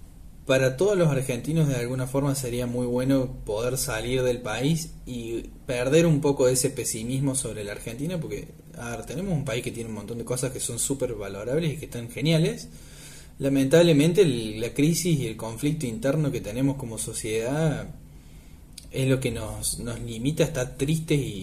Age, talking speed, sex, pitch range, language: 20-39, 175 wpm, male, 115-140 Hz, Spanish